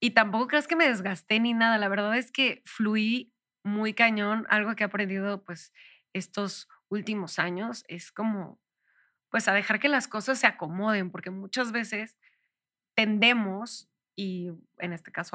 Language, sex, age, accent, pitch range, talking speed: Spanish, female, 20-39, Mexican, 195-245 Hz, 160 wpm